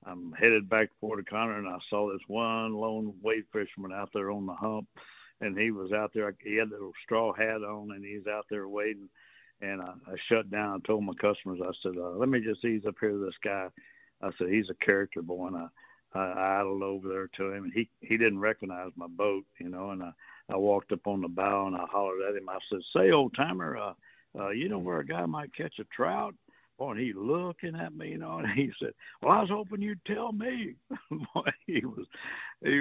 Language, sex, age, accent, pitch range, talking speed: English, male, 60-79, American, 95-115 Hz, 240 wpm